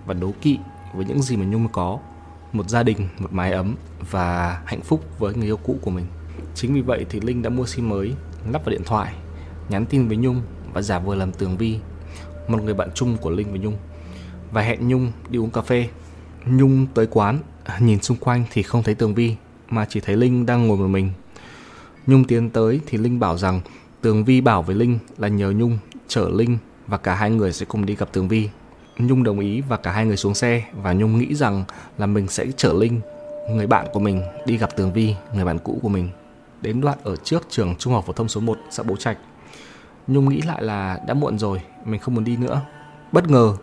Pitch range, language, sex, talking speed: 95-120 Hz, Vietnamese, male, 230 wpm